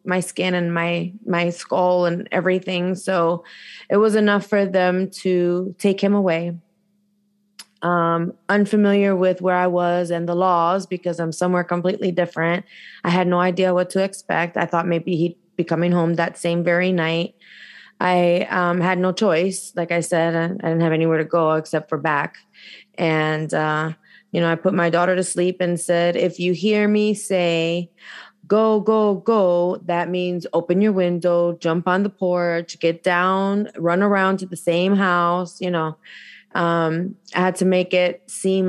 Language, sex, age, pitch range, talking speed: English, female, 20-39, 170-185 Hz, 175 wpm